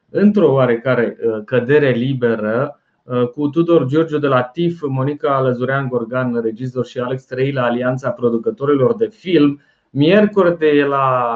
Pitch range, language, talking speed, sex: 120-150 Hz, Romanian, 125 wpm, male